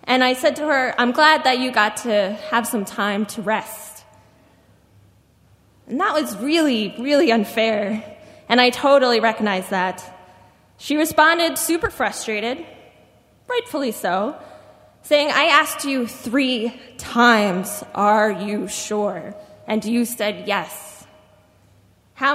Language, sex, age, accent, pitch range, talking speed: English, female, 10-29, American, 200-270 Hz, 125 wpm